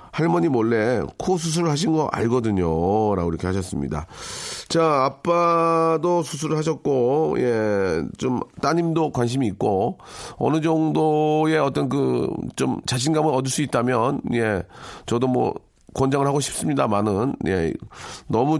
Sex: male